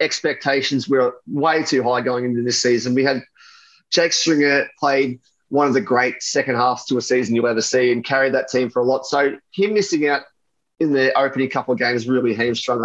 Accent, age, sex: Australian, 30-49, male